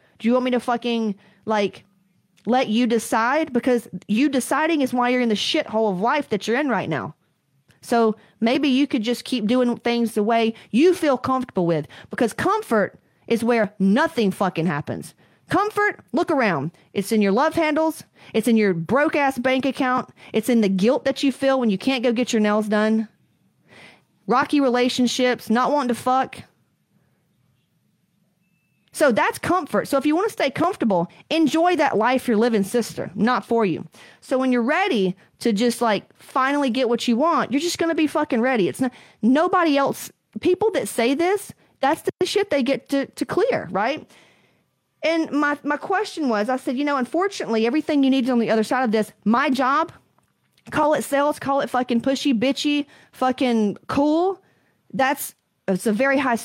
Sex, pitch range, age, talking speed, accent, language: female, 220-285 Hz, 30-49, 185 wpm, American, English